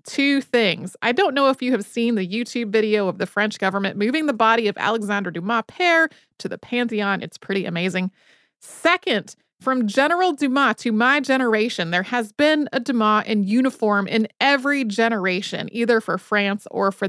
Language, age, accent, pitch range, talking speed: English, 30-49, American, 205-260 Hz, 180 wpm